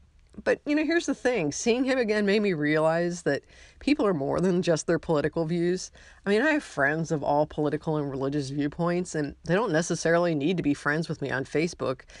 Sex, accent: female, American